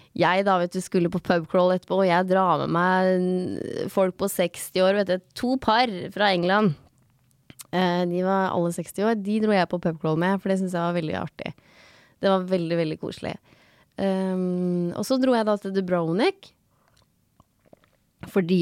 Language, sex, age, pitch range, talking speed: English, female, 20-39, 170-200 Hz, 175 wpm